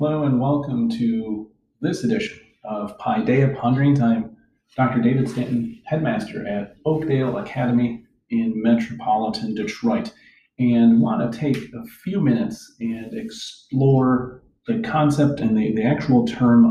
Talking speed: 135 wpm